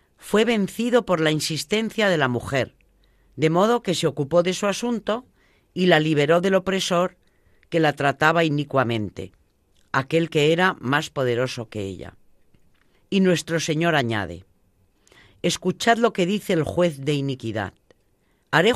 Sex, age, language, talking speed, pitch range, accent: female, 40-59, Spanish, 145 wpm, 125-180 Hz, Spanish